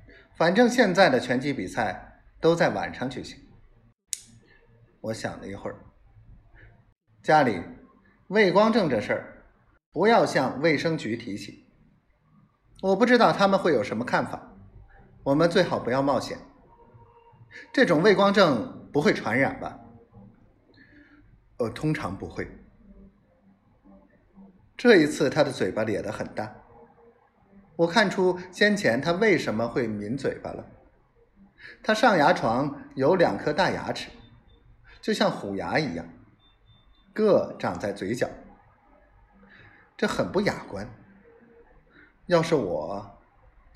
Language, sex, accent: Chinese, male, native